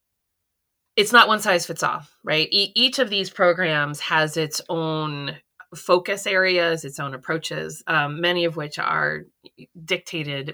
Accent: American